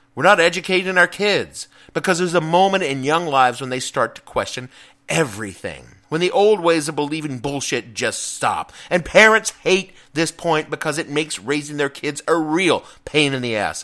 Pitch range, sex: 130-180 Hz, male